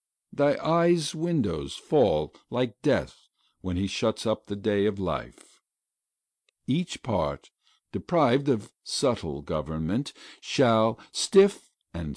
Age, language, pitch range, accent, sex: 60-79, Korean, 100-150 Hz, American, male